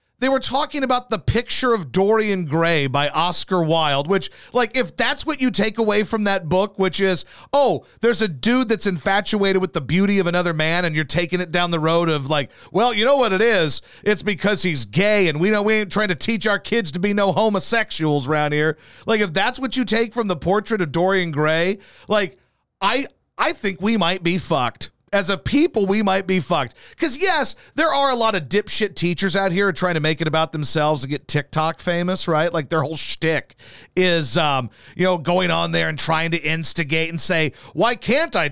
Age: 40-59